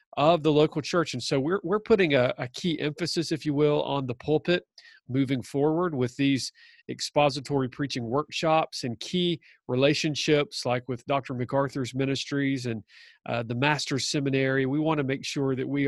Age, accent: 40-59, American